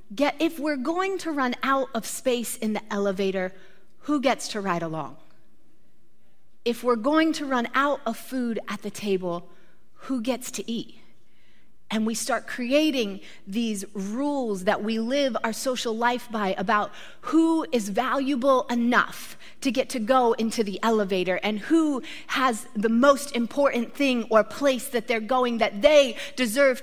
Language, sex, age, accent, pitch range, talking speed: English, female, 30-49, American, 200-275 Hz, 160 wpm